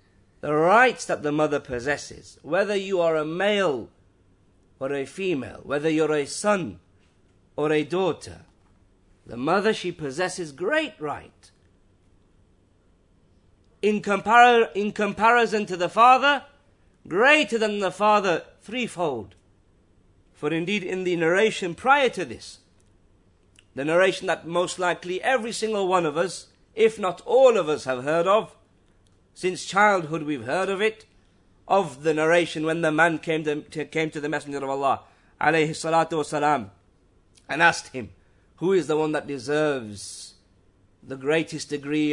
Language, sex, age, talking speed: English, male, 50-69, 140 wpm